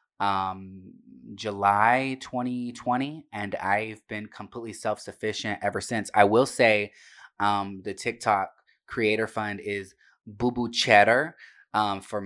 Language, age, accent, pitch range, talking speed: English, 20-39, American, 100-115 Hz, 115 wpm